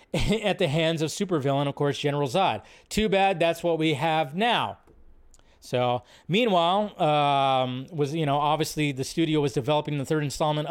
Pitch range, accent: 145-180 Hz, American